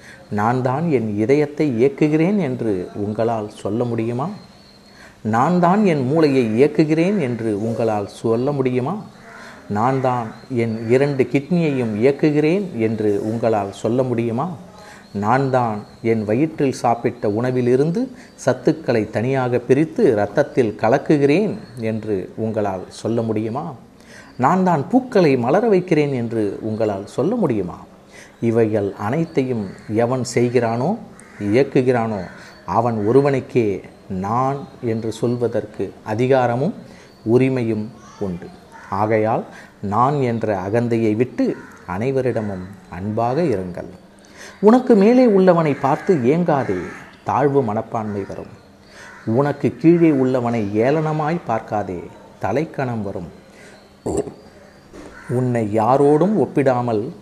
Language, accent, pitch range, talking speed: Tamil, native, 110-145 Hz, 95 wpm